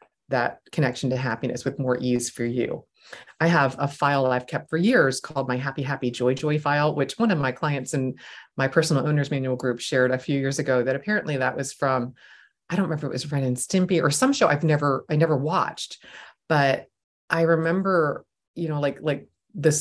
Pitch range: 140-185 Hz